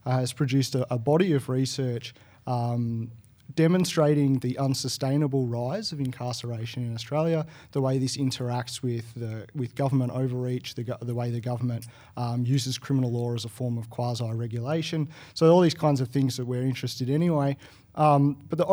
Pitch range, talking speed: 125-150 Hz, 175 wpm